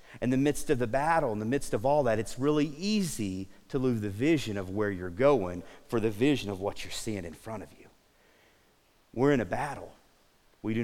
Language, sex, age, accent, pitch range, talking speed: English, male, 40-59, American, 110-150 Hz, 220 wpm